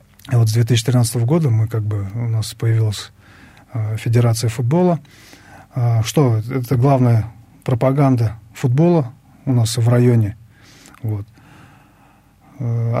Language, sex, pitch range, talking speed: Russian, male, 115-130 Hz, 115 wpm